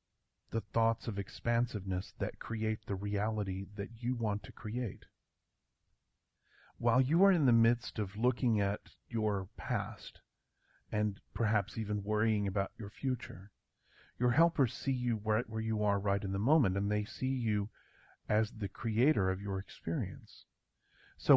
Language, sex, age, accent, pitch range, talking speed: English, male, 40-59, American, 100-120 Hz, 150 wpm